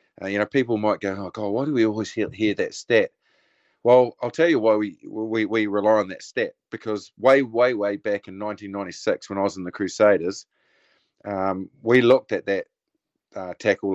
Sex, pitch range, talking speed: male, 100-125 Hz, 205 wpm